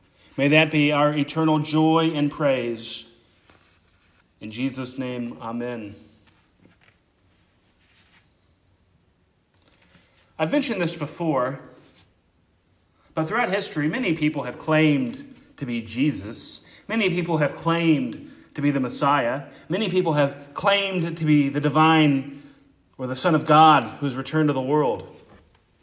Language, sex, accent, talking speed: English, male, American, 125 wpm